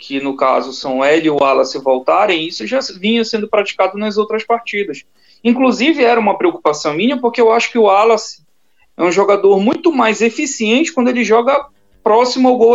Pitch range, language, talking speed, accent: 200-265 Hz, Portuguese, 190 wpm, Brazilian